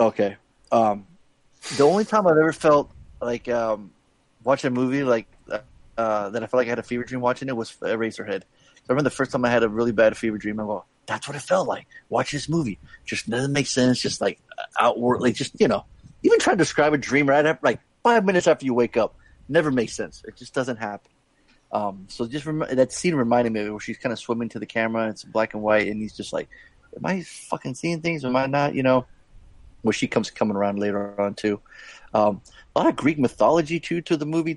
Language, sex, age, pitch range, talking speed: English, male, 30-49, 110-135 Hz, 240 wpm